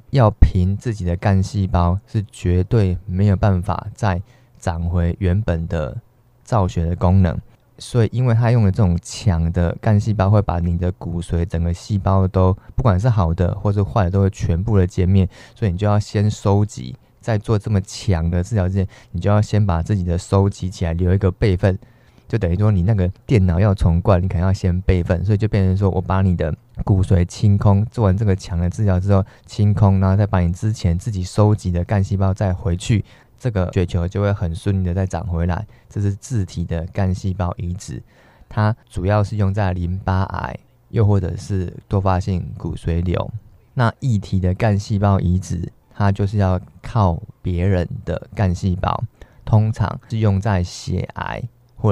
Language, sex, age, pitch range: Chinese, male, 20-39, 90-110 Hz